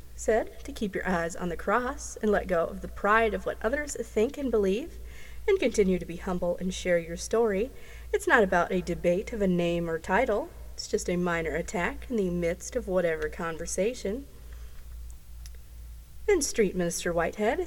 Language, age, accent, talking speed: English, 30-49, American, 185 wpm